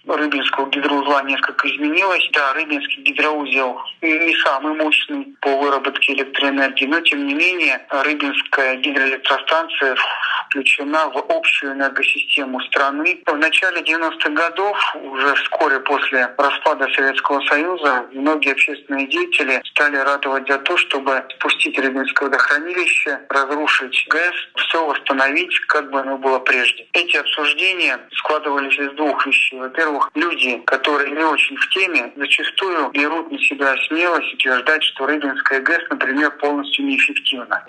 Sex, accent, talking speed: male, native, 125 wpm